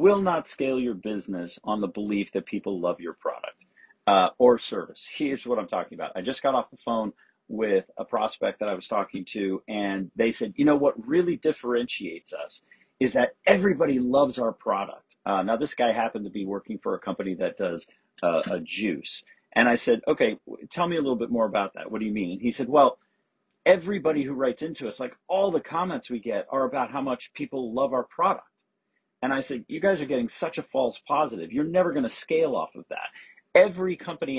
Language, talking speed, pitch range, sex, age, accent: English, 215 wpm, 110-175 Hz, male, 40-59, American